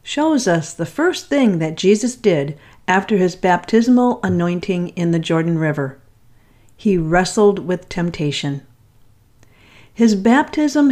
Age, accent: 50-69, American